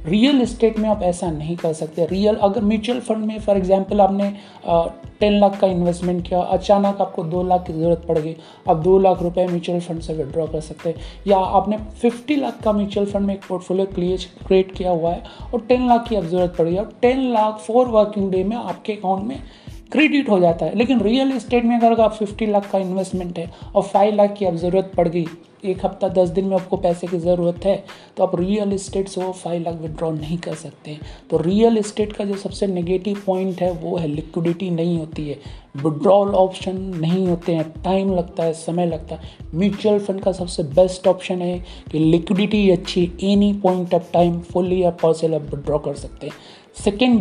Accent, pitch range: native, 175-205 Hz